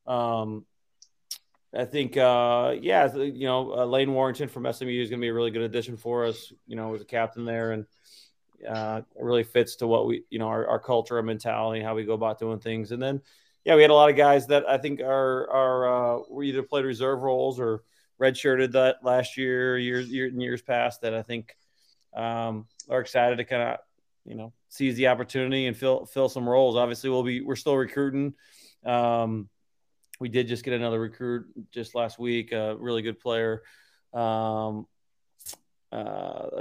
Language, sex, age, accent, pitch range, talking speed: English, male, 30-49, American, 115-135 Hz, 195 wpm